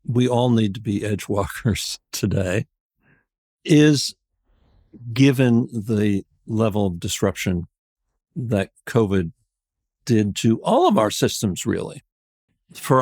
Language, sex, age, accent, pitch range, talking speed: English, male, 60-79, American, 105-135 Hz, 110 wpm